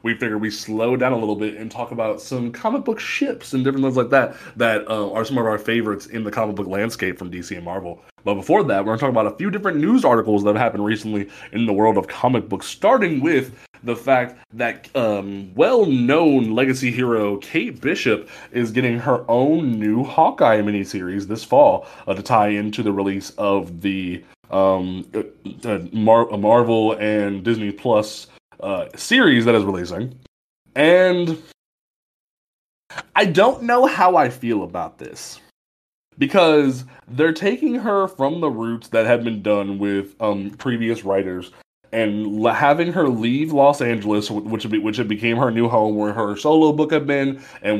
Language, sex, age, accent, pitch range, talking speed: English, male, 20-39, American, 105-135 Hz, 180 wpm